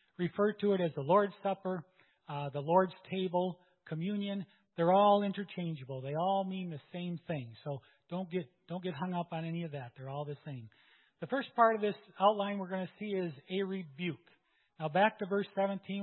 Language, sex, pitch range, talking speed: English, male, 165-210 Hz, 200 wpm